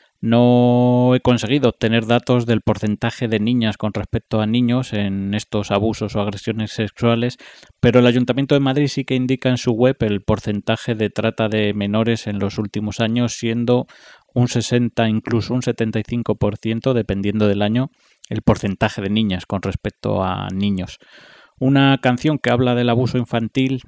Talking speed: 160 wpm